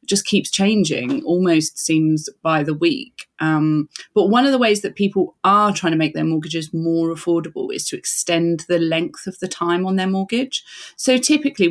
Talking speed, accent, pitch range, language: 190 wpm, British, 160-190 Hz, English